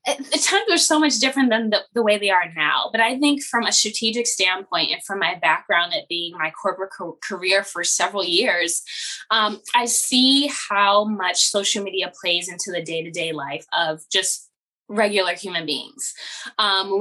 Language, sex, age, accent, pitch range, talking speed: English, female, 10-29, American, 190-235 Hz, 190 wpm